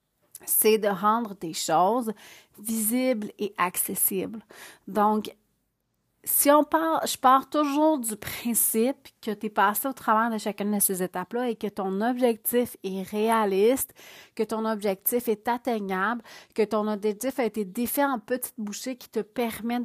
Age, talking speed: 30-49, 155 wpm